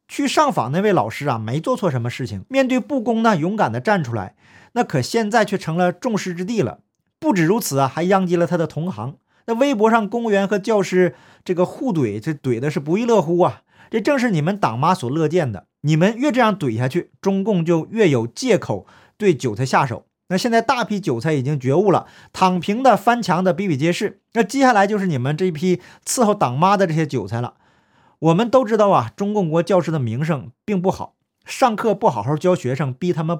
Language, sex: Chinese, male